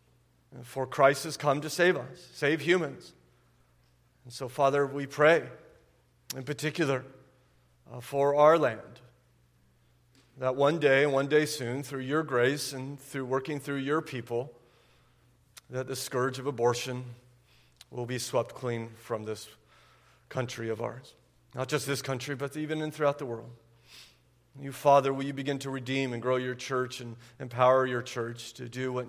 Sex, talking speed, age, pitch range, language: male, 155 wpm, 40-59, 120-135 Hz, English